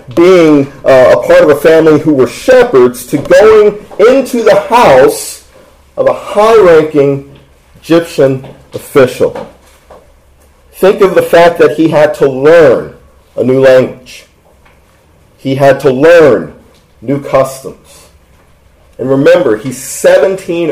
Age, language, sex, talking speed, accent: 40-59, English, male, 120 wpm, American